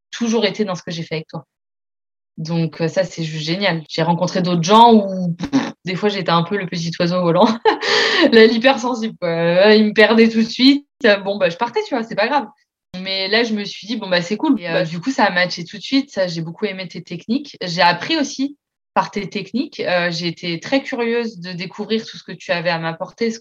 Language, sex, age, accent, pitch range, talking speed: French, female, 20-39, French, 170-215 Hz, 235 wpm